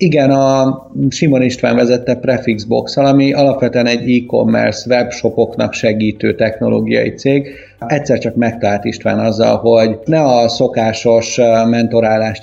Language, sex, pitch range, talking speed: Hungarian, male, 110-130 Hz, 115 wpm